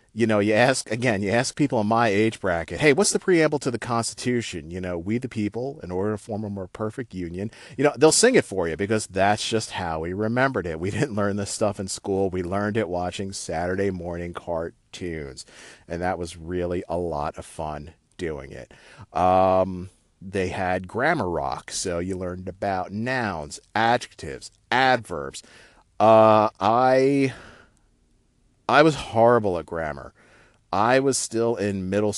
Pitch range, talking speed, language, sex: 90-115 Hz, 175 wpm, English, male